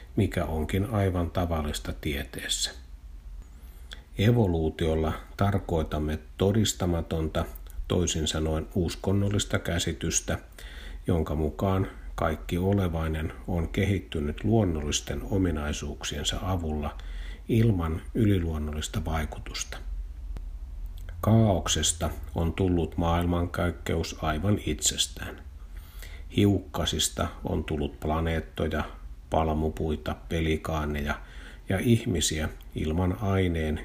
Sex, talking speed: male, 70 wpm